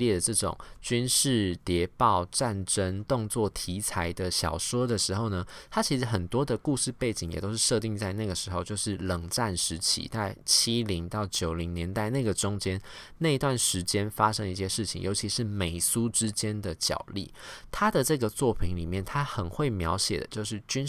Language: Chinese